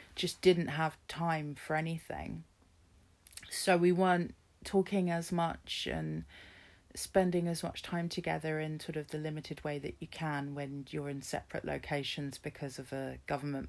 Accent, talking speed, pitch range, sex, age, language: British, 160 wpm, 150-195 Hz, female, 30-49, English